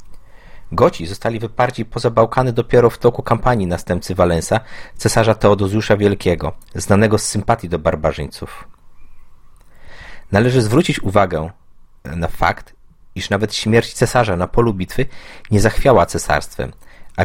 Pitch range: 90-110 Hz